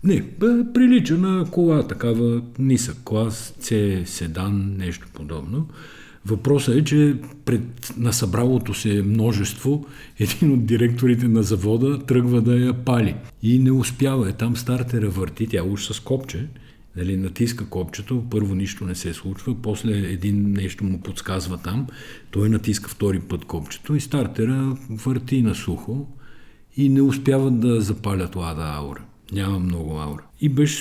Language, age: Bulgarian, 50-69